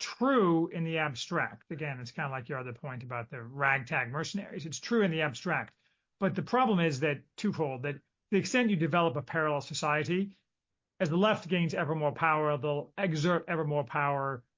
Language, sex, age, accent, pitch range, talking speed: English, male, 40-59, American, 145-185 Hz, 195 wpm